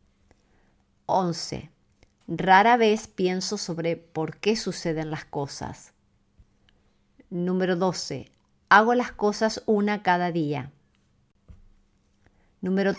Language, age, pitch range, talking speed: Spanish, 50-69, 150-195 Hz, 90 wpm